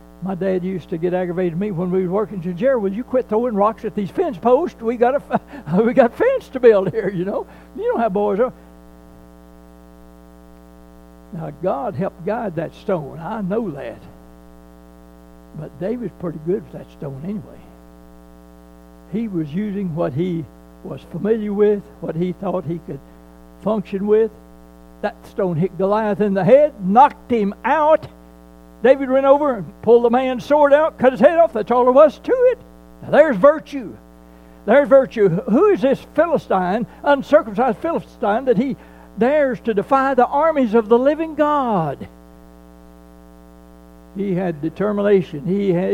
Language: English